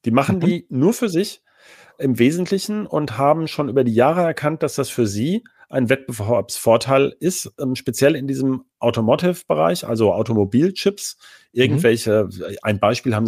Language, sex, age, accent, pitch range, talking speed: German, male, 40-59, German, 110-140 Hz, 145 wpm